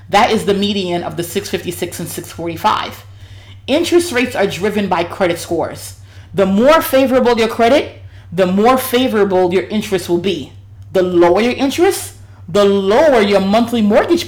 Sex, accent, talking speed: female, American, 155 wpm